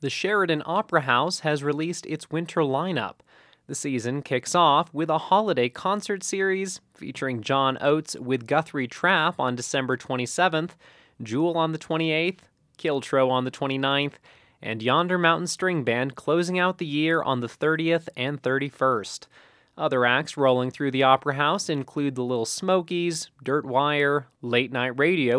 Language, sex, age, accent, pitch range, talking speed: English, male, 20-39, American, 130-165 Hz, 155 wpm